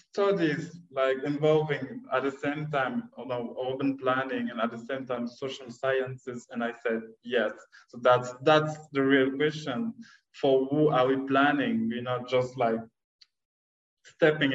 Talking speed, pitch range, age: 150 wpm, 125-150 Hz, 20-39